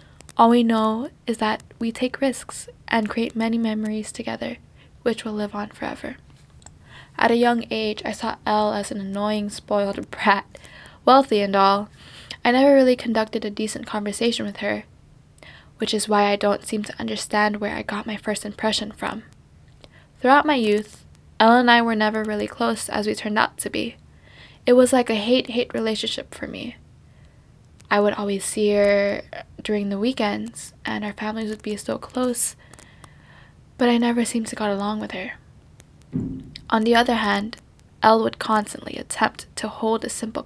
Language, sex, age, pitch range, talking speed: English, female, 10-29, 210-235 Hz, 175 wpm